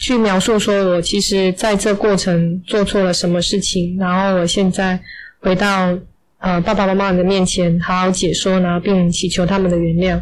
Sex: female